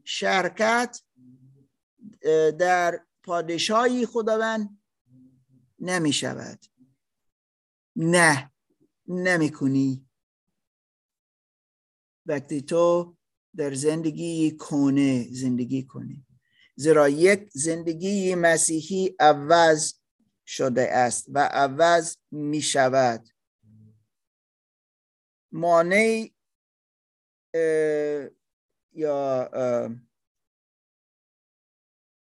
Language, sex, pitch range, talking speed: Persian, male, 130-175 Hz, 55 wpm